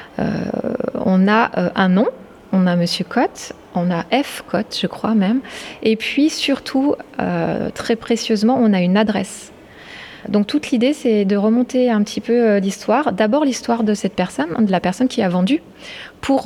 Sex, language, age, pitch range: female, French, 20-39, 200-235 Hz